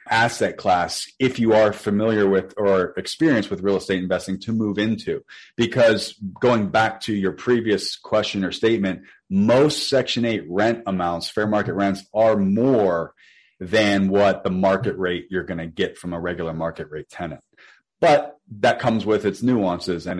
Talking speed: 170 wpm